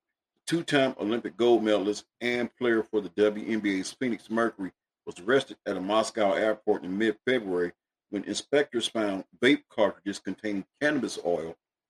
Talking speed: 135 wpm